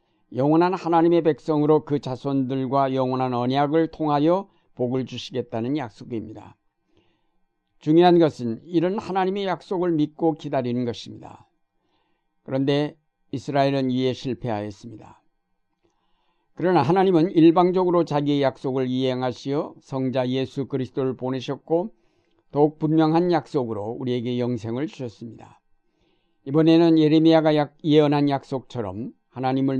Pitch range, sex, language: 125-155 Hz, male, Korean